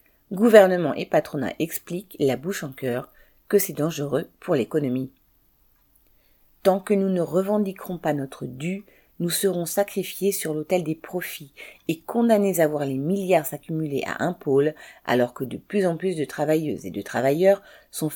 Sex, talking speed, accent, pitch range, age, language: female, 165 wpm, French, 145-190 Hz, 40-59, French